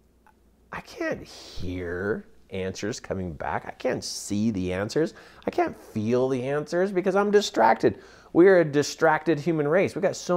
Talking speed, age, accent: 160 wpm, 30-49, American